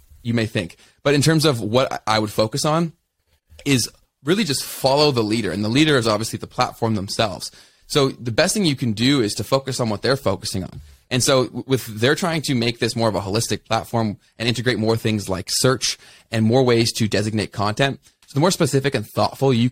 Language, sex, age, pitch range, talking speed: English, male, 20-39, 105-135 Hz, 220 wpm